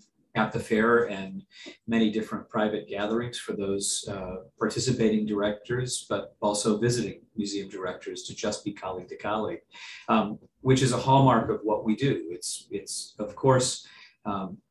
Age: 40-59